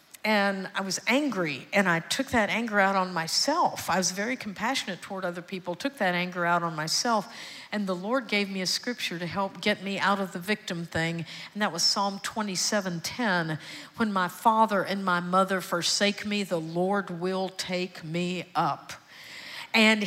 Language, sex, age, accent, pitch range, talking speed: English, female, 50-69, American, 195-255 Hz, 180 wpm